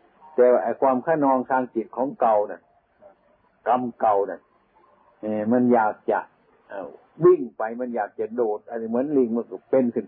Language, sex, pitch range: Thai, male, 105-130 Hz